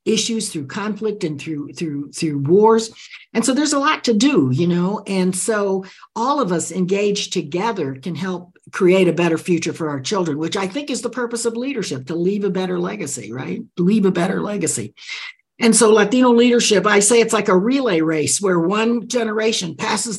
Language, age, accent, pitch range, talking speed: English, 60-79, American, 160-220 Hz, 195 wpm